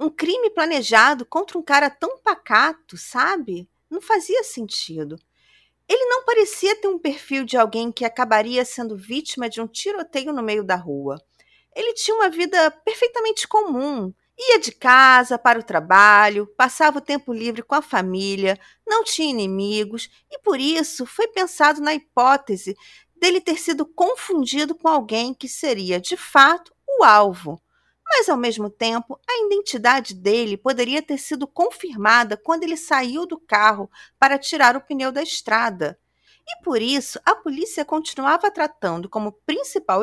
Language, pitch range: Portuguese, 220-335 Hz